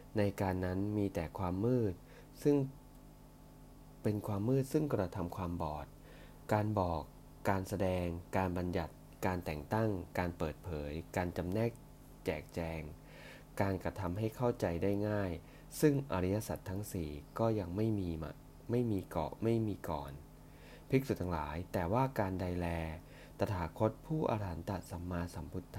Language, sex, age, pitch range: English, male, 20-39, 85-105 Hz